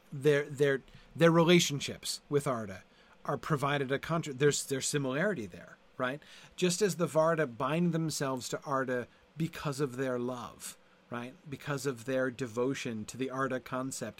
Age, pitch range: 40-59, 125-160 Hz